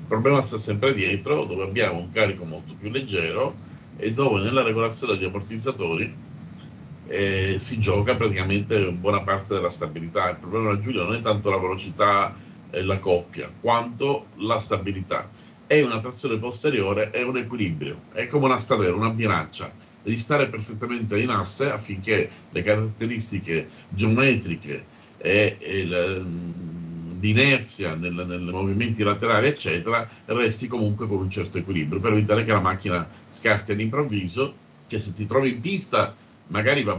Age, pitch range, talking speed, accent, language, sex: 50-69, 95-120 Hz, 150 wpm, native, Italian, male